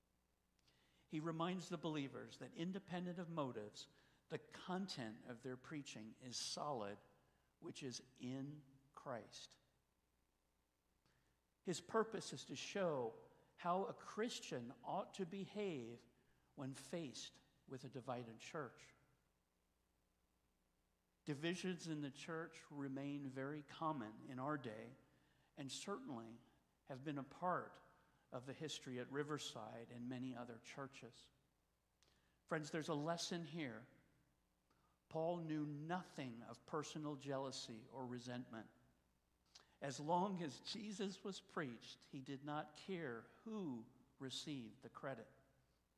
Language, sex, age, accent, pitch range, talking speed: English, male, 60-79, American, 115-165 Hz, 115 wpm